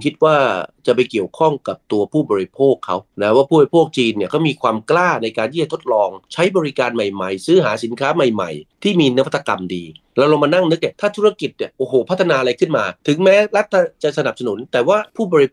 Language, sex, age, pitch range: Thai, male, 30-49, 110-160 Hz